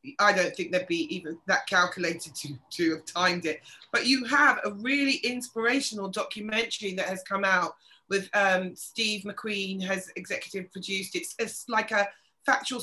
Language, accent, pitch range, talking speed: English, British, 185-230 Hz, 175 wpm